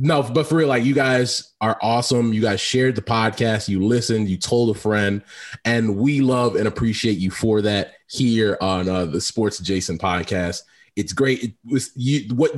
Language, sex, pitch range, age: English, male, 110-135 Hz, 20-39